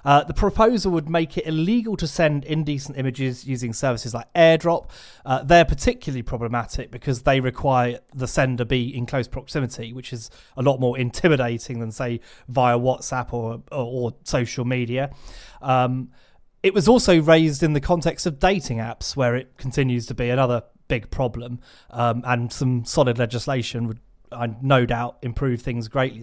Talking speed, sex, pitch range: 170 wpm, male, 125-150 Hz